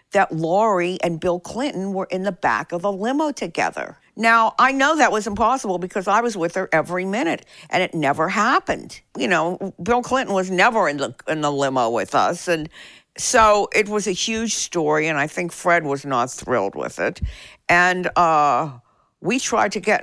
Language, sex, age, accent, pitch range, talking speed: English, female, 50-69, American, 155-210 Hz, 195 wpm